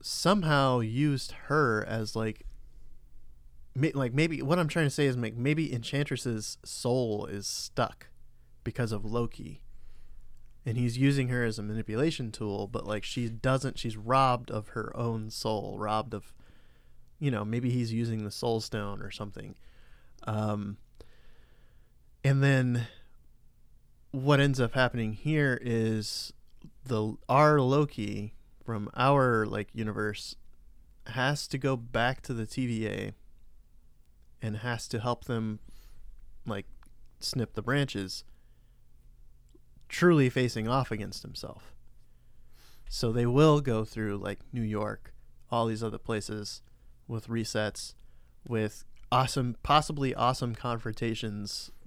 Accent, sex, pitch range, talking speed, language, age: American, male, 105-130 Hz, 125 wpm, English, 30-49